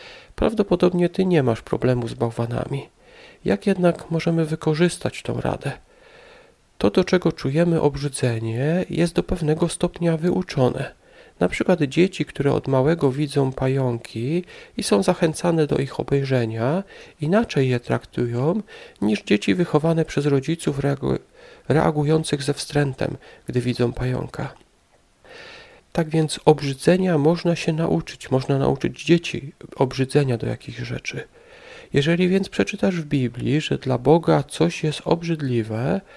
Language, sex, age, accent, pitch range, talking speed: Polish, male, 40-59, native, 130-175 Hz, 125 wpm